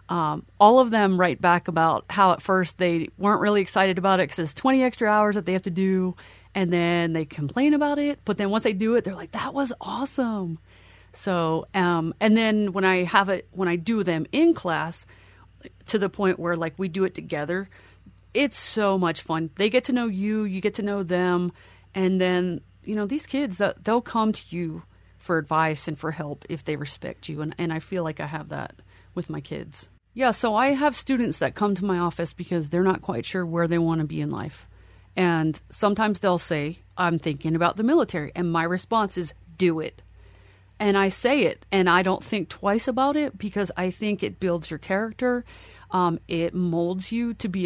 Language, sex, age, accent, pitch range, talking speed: English, female, 30-49, American, 165-205 Hz, 215 wpm